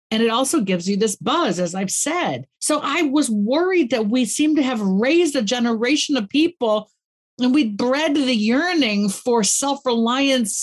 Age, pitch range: 50-69, 170-240 Hz